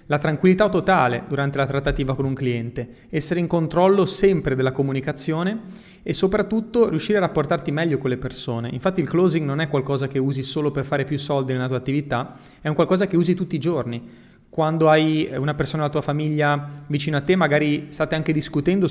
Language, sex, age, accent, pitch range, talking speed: Italian, male, 30-49, native, 140-175 Hz, 195 wpm